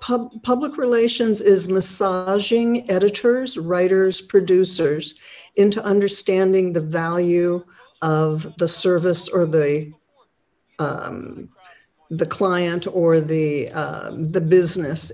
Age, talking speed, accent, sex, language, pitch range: 60-79, 100 wpm, American, female, English, 170-200 Hz